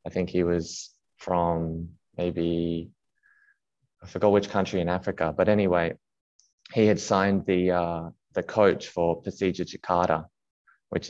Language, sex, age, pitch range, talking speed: English, male, 20-39, 85-90 Hz, 135 wpm